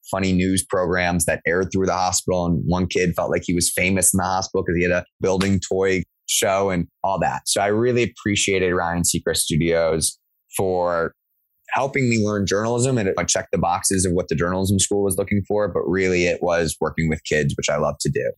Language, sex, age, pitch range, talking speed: English, male, 20-39, 85-110 Hz, 210 wpm